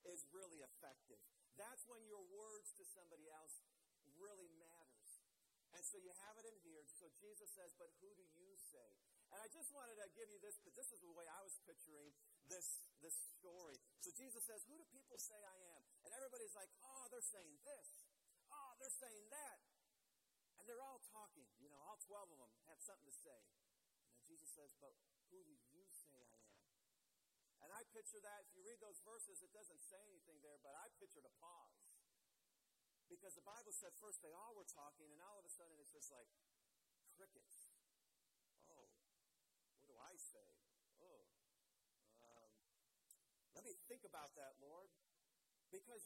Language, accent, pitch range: English, American, 175-280 Hz